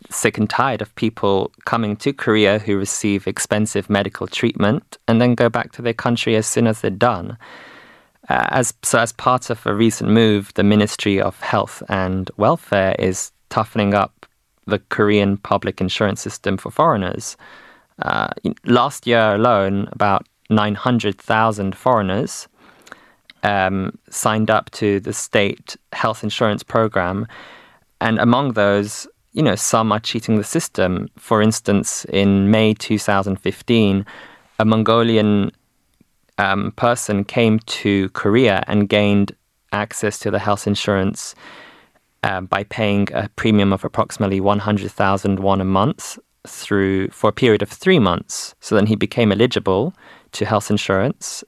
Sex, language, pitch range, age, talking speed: male, English, 100-110 Hz, 20-39, 150 wpm